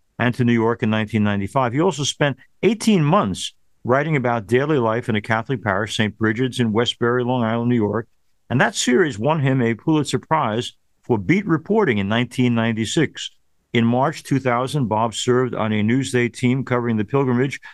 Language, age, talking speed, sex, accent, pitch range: English, 50-69, 175 wpm, male, American, 115-150 Hz